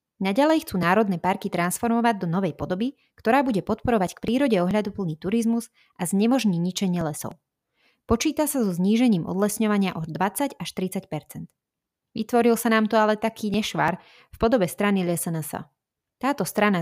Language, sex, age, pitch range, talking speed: Slovak, female, 20-39, 165-215 Hz, 150 wpm